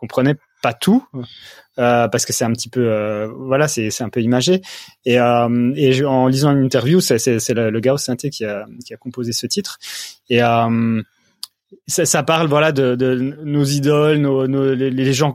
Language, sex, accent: French, male, French